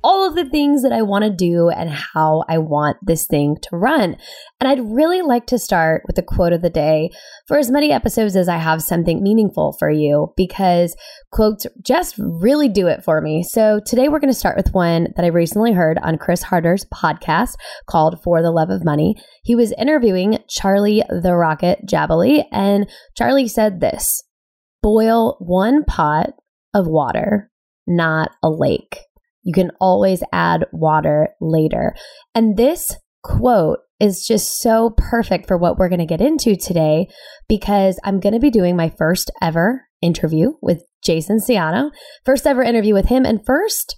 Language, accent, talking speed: English, American, 175 wpm